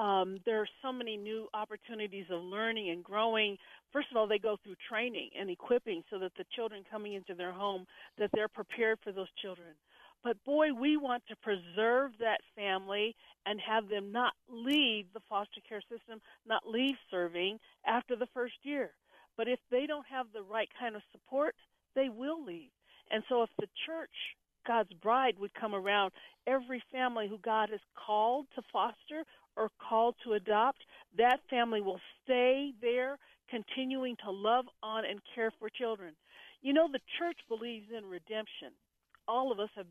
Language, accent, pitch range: English, American, 205-255 Hz